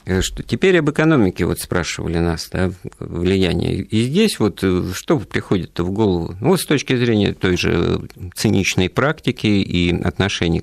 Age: 50-69